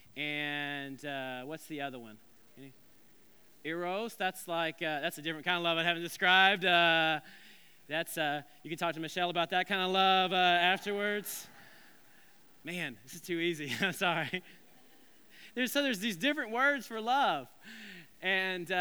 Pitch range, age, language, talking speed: 155-195 Hz, 20-39, English, 165 wpm